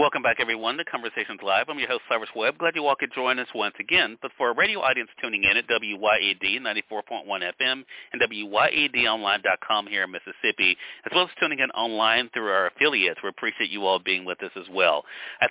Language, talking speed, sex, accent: English, 210 wpm, male, American